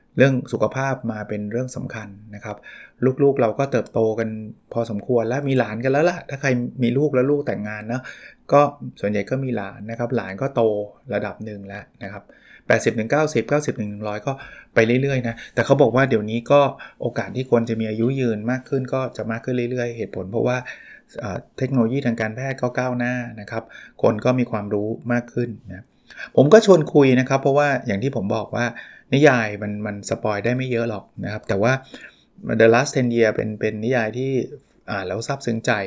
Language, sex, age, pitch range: Thai, male, 20-39, 110-130 Hz